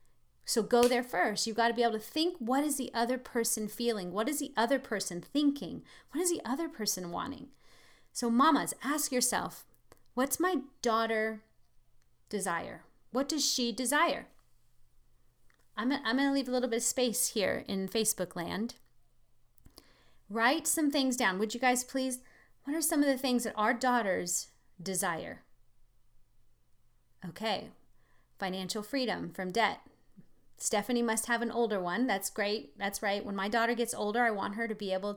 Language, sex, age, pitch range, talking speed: English, female, 30-49, 200-260 Hz, 165 wpm